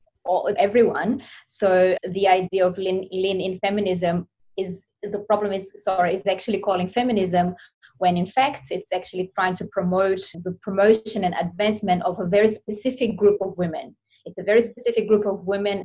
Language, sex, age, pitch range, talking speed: English, female, 20-39, 180-210 Hz, 165 wpm